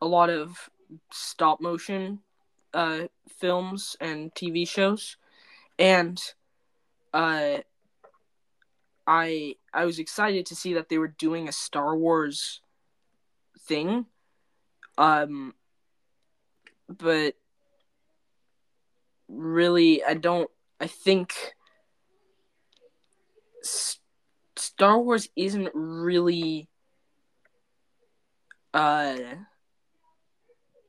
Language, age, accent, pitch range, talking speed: English, 10-29, American, 155-200 Hz, 75 wpm